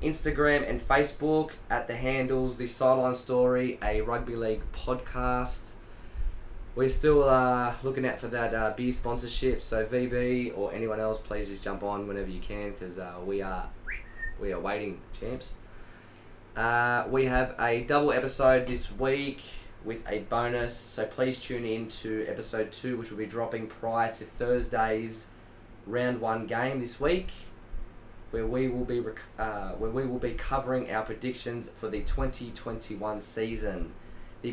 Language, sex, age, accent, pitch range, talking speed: English, male, 20-39, Australian, 110-125 Hz, 160 wpm